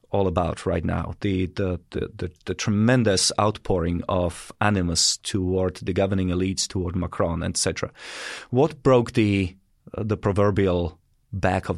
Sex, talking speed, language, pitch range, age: male, 145 wpm, English, 95-120 Hz, 30-49